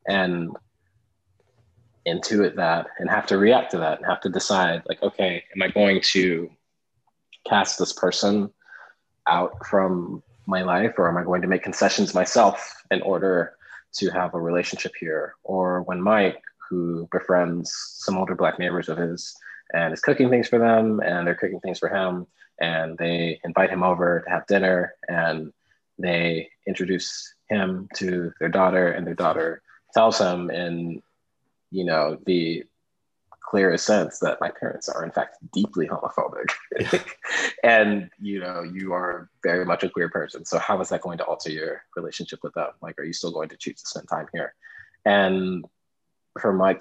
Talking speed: 170 wpm